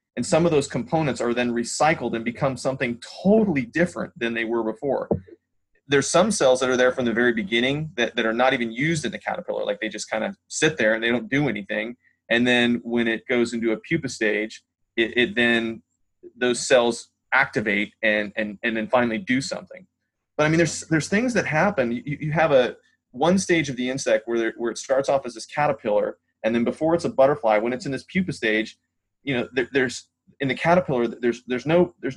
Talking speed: 220 wpm